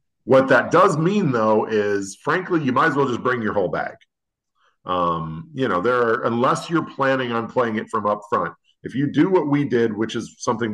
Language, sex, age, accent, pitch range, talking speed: English, male, 40-59, American, 100-135 Hz, 220 wpm